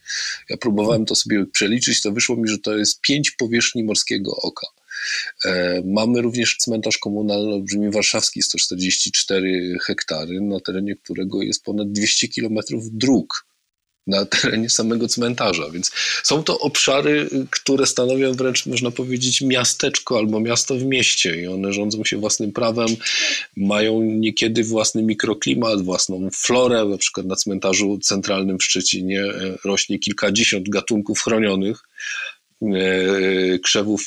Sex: male